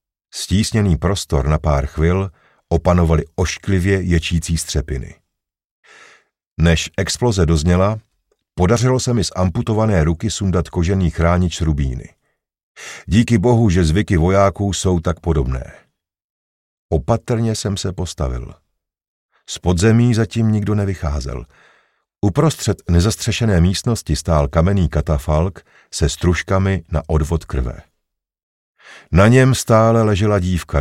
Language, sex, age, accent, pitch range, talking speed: Czech, male, 50-69, native, 80-105 Hz, 105 wpm